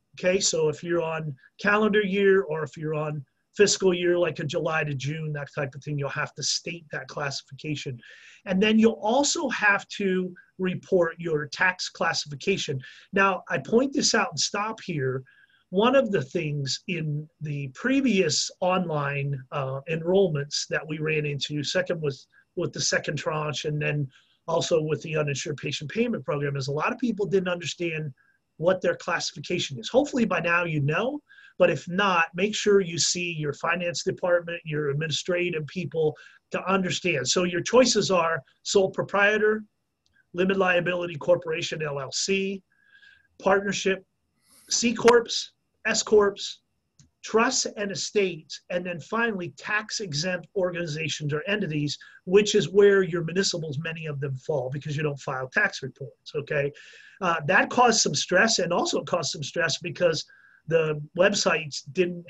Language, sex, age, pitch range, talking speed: English, male, 30-49, 150-195 Hz, 155 wpm